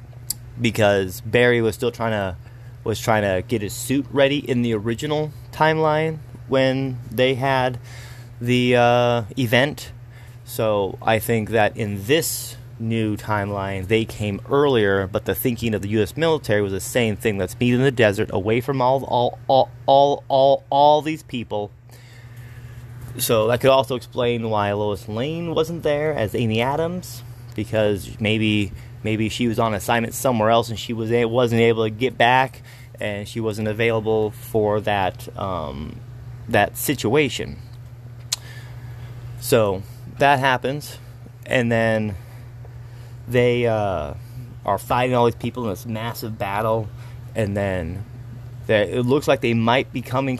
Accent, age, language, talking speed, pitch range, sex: American, 30-49, English, 150 wpm, 110-125 Hz, male